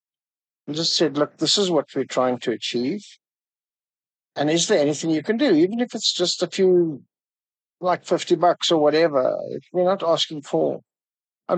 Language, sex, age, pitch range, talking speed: English, male, 60-79, 145-185 Hz, 170 wpm